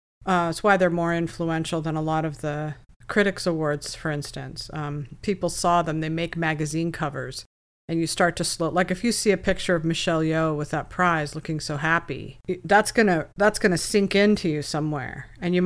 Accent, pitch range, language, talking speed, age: American, 150-185 Hz, English, 205 wpm, 50-69